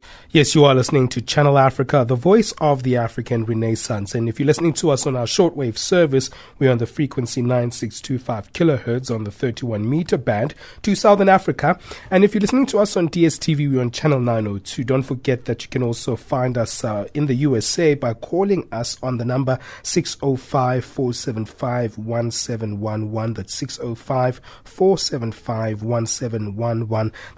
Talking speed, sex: 155 wpm, male